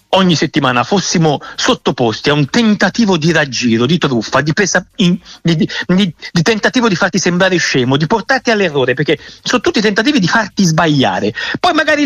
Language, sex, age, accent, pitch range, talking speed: Italian, male, 60-79, native, 160-240 Hz, 165 wpm